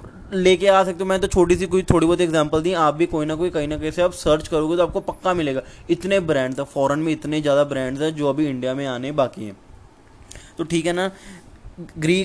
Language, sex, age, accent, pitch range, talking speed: Hindi, male, 20-39, native, 135-170 Hz, 240 wpm